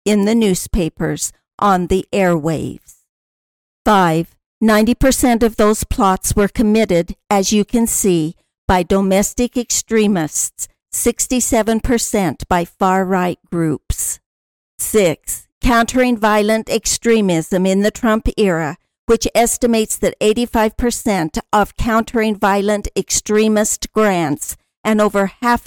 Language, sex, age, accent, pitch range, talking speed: English, female, 50-69, American, 185-225 Hz, 105 wpm